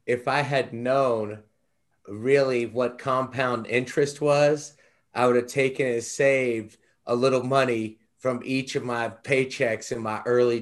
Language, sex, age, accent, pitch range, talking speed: English, male, 30-49, American, 115-130 Hz, 145 wpm